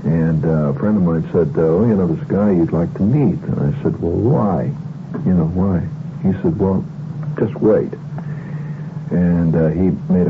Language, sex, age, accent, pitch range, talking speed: English, male, 60-79, American, 95-160 Hz, 190 wpm